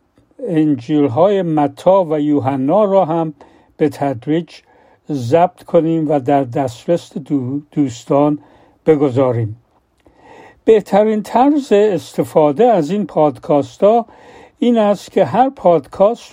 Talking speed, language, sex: 105 wpm, Persian, male